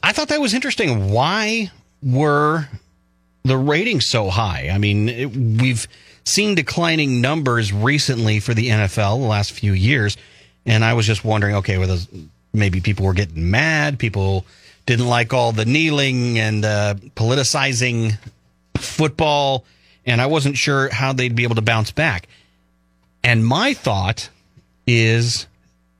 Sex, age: male, 30-49